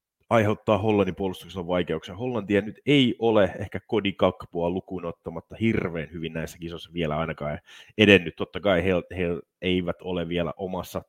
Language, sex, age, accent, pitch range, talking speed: Finnish, male, 30-49, native, 85-105 Hz, 145 wpm